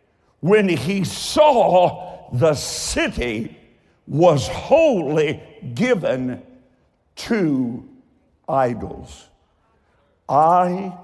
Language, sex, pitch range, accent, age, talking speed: English, male, 140-205 Hz, American, 60-79, 60 wpm